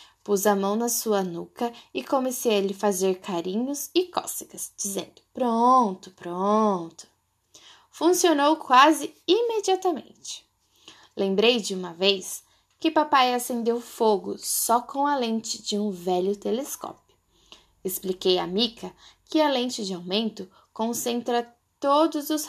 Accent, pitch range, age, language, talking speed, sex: Brazilian, 195-295 Hz, 10-29, Portuguese, 125 wpm, female